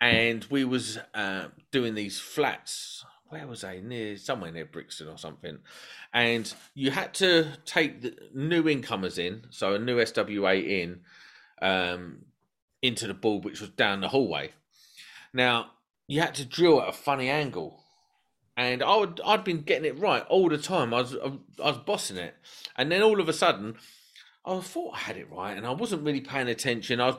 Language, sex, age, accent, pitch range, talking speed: English, male, 30-49, British, 110-175 Hz, 190 wpm